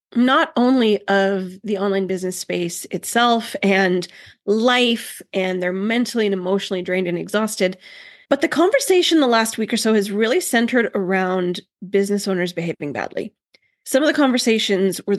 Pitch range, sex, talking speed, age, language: 190-250 Hz, female, 155 wpm, 20-39, English